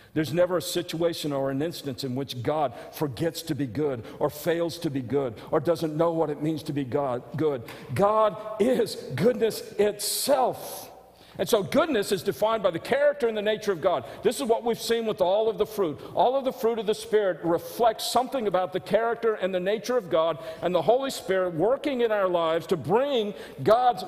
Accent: American